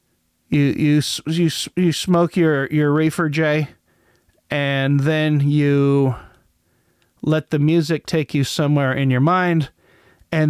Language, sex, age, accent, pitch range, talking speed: English, male, 40-59, American, 130-165 Hz, 125 wpm